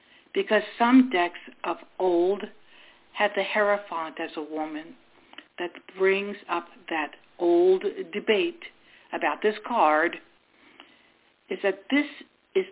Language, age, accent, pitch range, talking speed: English, 60-79, American, 180-290 Hz, 115 wpm